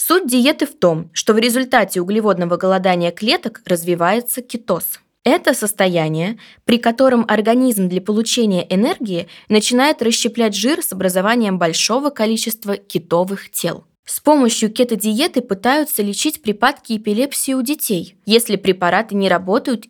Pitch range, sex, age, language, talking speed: 180-240 Hz, female, 20-39, Russian, 125 wpm